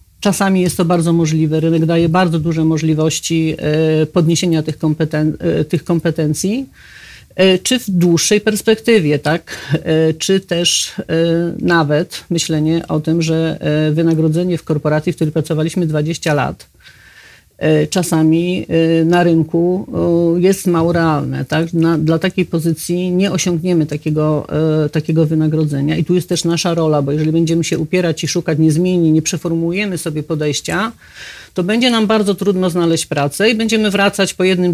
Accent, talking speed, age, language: native, 135 wpm, 40-59, Polish